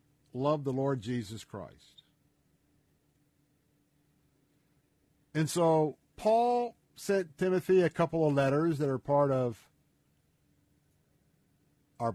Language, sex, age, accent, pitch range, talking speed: English, male, 50-69, American, 115-150 Hz, 95 wpm